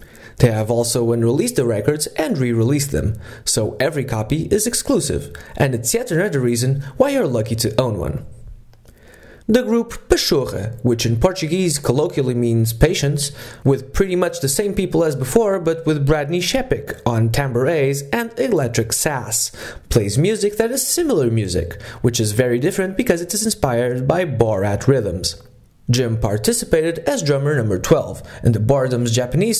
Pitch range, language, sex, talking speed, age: 115-175 Hz, English, male, 160 wpm, 20-39